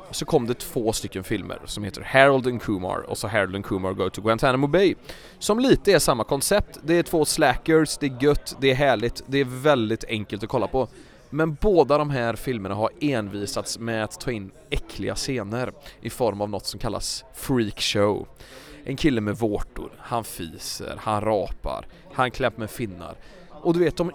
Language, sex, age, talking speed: English, male, 20-39, 195 wpm